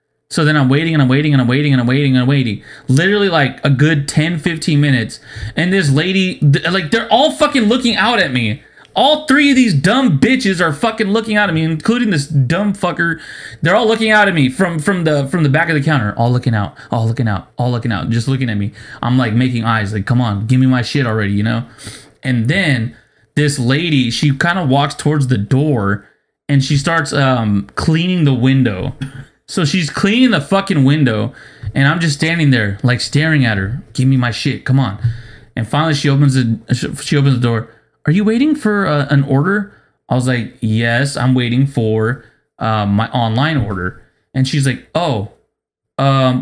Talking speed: 210 wpm